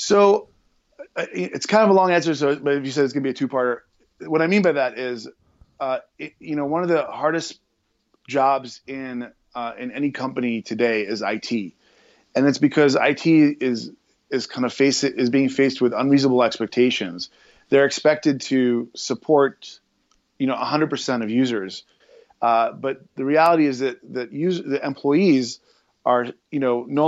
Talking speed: 175 wpm